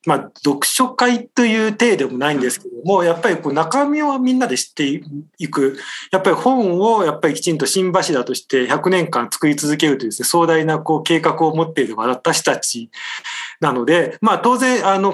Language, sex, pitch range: Japanese, male, 125-180 Hz